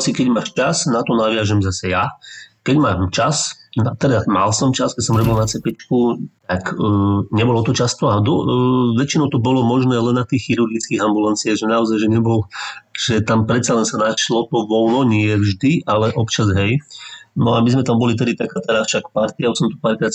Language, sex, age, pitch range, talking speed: Slovak, male, 30-49, 105-125 Hz, 205 wpm